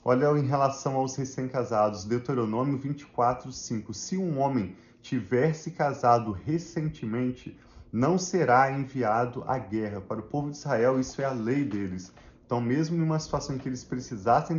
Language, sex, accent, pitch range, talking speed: Portuguese, male, Brazilian, 120-145 Hz, 160 wpm